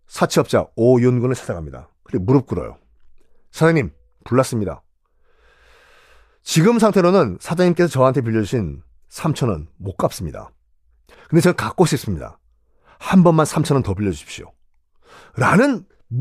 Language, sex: Korean, male